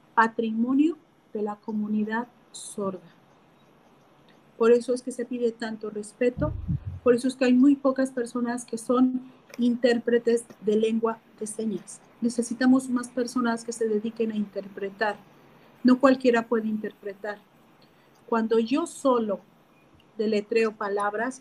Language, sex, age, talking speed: Spanish, female, 40-59, 125 wpm